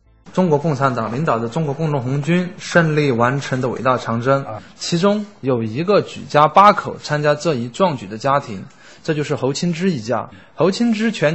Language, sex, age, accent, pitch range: Chinese, male, 20-39, native, 135-200 Hz